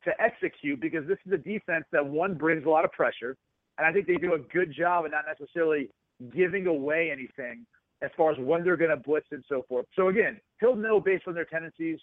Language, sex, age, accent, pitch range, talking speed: English, male, 40-59, American, 155-180 Hz, 235 wpm